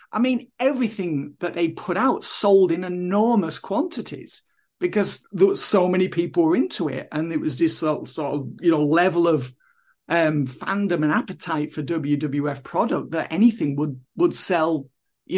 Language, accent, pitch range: English, British, 160-215 Hz